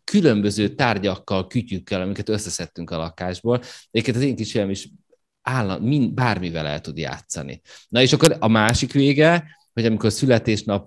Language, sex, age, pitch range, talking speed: Hungarian, male, 30-49, 90-120 Hz, 150 wpm